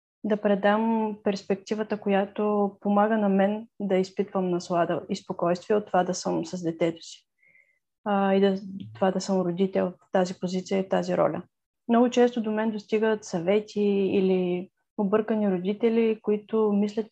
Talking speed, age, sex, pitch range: 150 wpm, 20-39, female, 190-220 Hz